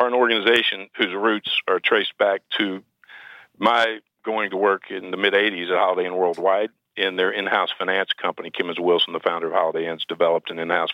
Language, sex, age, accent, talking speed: English, male, 50-69, American, 185 wpm